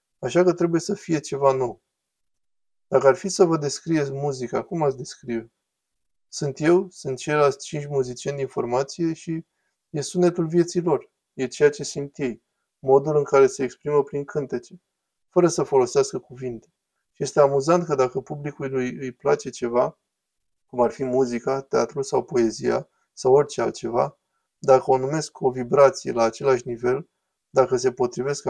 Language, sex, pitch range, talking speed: Romanian, male, 130-165 Hz, 160 wpm